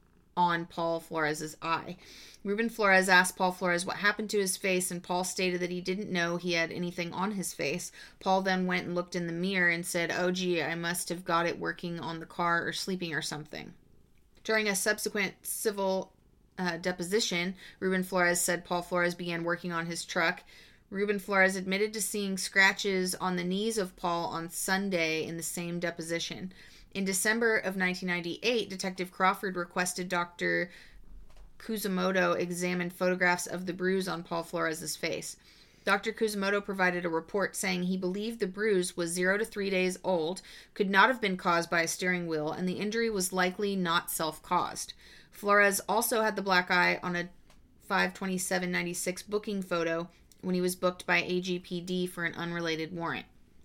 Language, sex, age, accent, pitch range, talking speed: English, female, 30-49, American, 170-190 Hz, 175 wpm